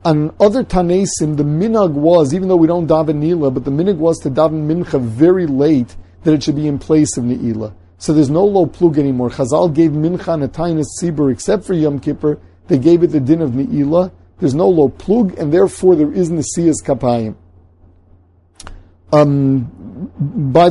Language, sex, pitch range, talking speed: English, male, 135-170 Hz, 190 wpm